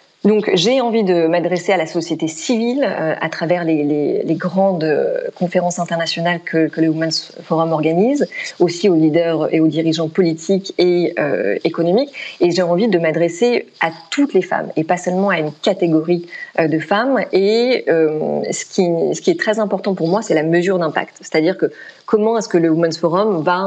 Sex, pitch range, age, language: female, 160-195 Hz, 30-49, French